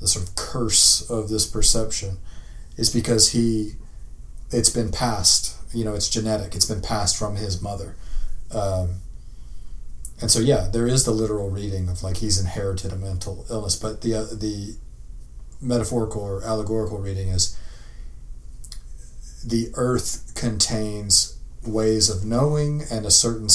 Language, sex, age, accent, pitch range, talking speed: English, male, 30-49, American, 95-110 Hz, 145 wpm